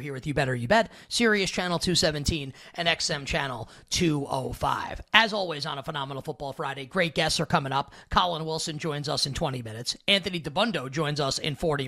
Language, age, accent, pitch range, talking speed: English, 30-49, American, 150-185 Hz, 210 wpm